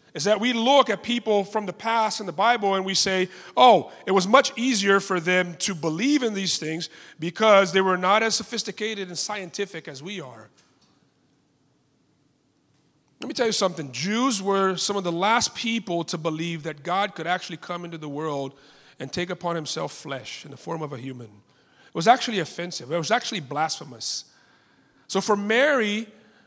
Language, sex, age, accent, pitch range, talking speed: English, male, 30-49, American, 145-205 Hz, 185 wpm